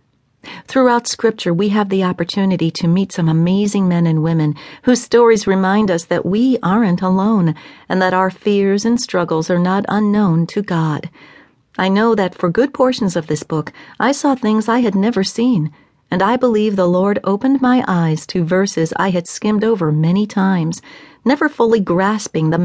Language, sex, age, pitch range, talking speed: English, female, 40-59, 170-220 Hz, 180 wpm